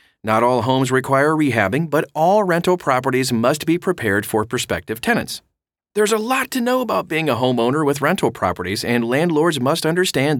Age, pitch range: 30-49, 110-150 Hz